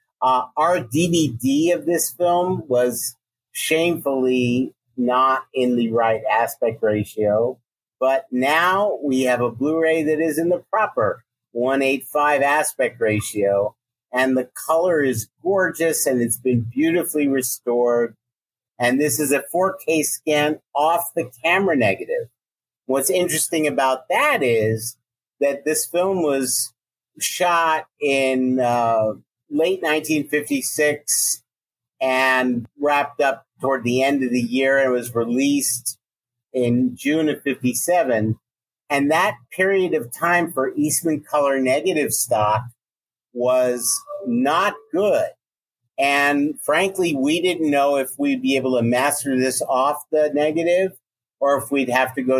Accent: American